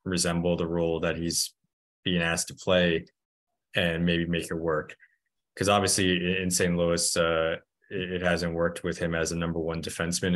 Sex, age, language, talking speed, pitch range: male, 20-39, English, 175 wpm, 85-90 Hz